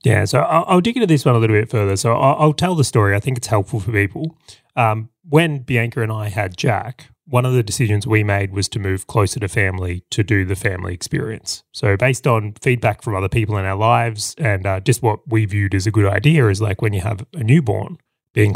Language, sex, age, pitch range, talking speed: English, male, 20-39, 100-120 Hz, 240 wpm